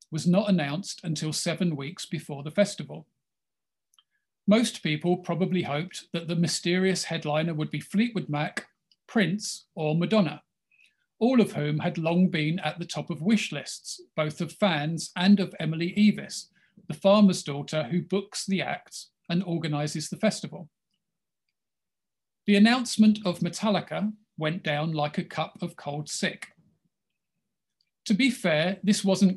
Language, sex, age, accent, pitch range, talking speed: English, male, 40-59, British, 160-195 Hz, 145 wpm